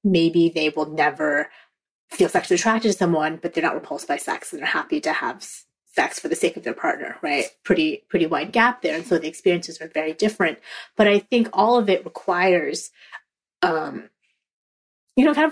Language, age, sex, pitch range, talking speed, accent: English, 30-49, female, 165-210 Hz, 200 wpm, American